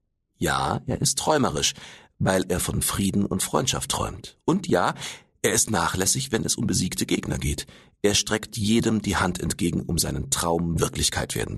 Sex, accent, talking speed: male, German, 170 wpm